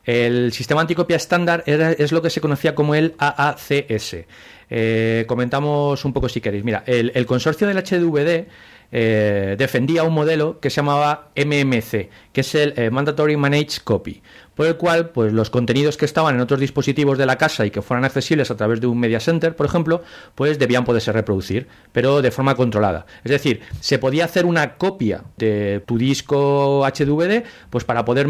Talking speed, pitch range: 180 wpm, 120-155 Hz